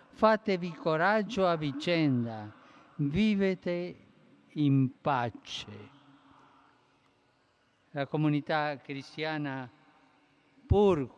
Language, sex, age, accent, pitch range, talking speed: Italian, male, 50-69, native, 130-160 Hz, 60 wpm